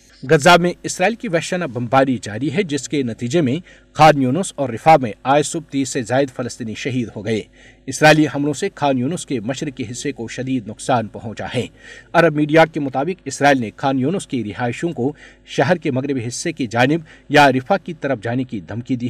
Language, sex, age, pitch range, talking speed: Urdu, male, 50-69, 120-150 Hz, 200 wpm